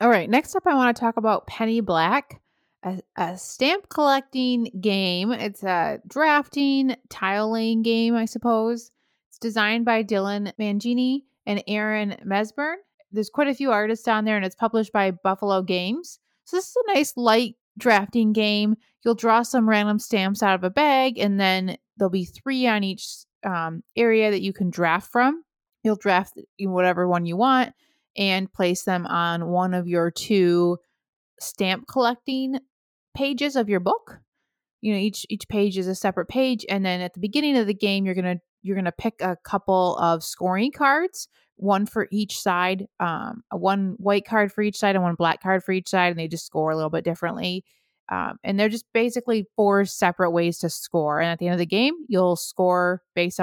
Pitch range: 185-235 Hz